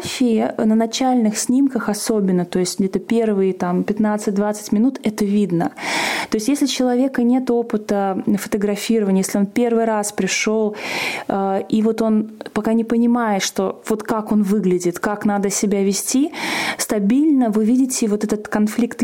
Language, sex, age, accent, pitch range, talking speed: Russian, female, 20-39, native, 210-245 Hz, 150 wpm